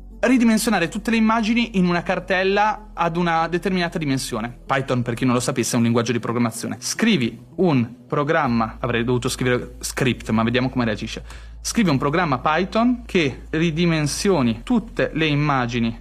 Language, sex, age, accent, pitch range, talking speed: Italian, male, 30-49, native, 130-195 Hz, 155 wpm